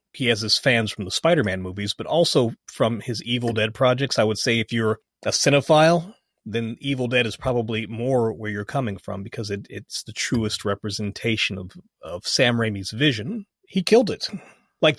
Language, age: English, 30-49